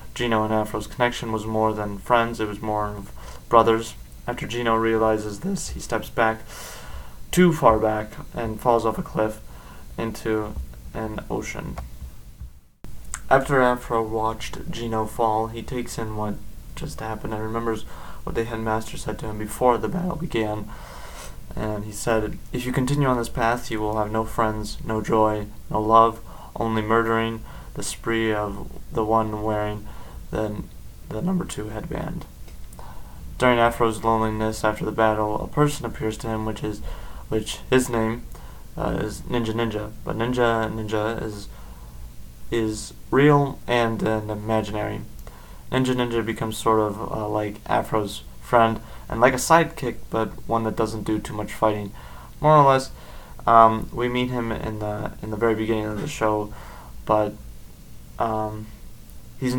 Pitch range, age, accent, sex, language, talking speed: 105-115 Hz, 20-39, American, male, English, 155 wpm